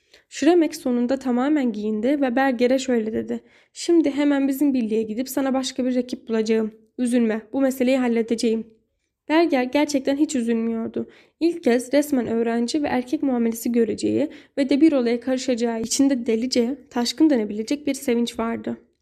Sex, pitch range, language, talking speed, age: female, 230-280 Hz, Turkish, 145 wpm, 10-29